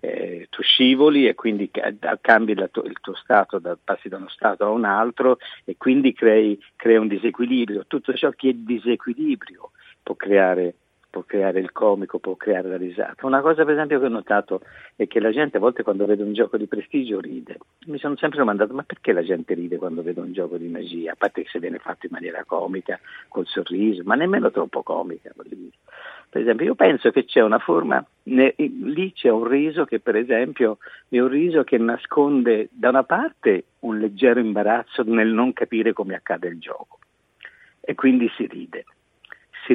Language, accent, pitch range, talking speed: Italian, native, 110-165 Hz, 195 wpm